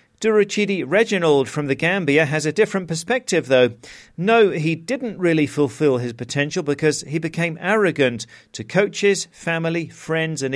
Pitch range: 130-180 Hz